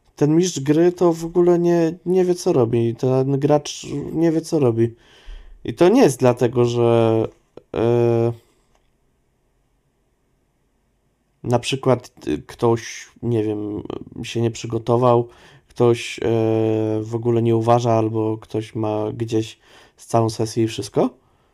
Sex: male